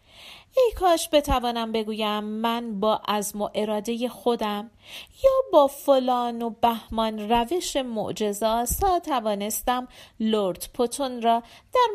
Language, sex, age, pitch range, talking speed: Persian, female, 40-59, 210-300 Hz, 115 wpm